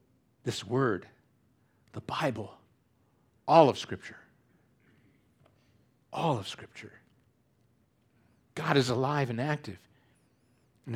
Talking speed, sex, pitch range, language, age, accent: 90 wpm, male, 120-185 Hz, English, 60-79, American